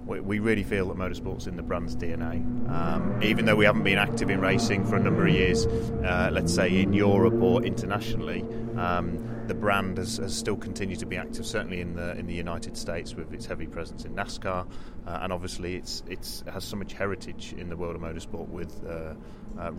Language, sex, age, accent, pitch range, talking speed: English, male, 30-49, British, 85-115 Hz, 210 wpm